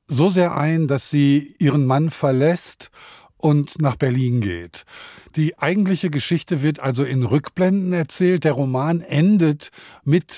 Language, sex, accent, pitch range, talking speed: German, male, German, 140-175 Hz, 140 wpm